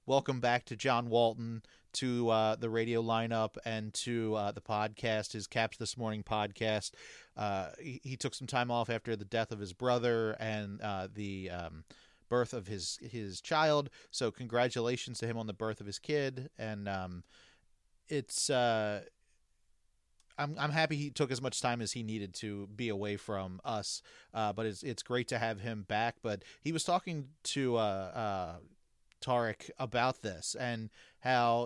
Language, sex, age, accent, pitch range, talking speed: English, male, 30-49, American, 110-140 Hz, 175 wpm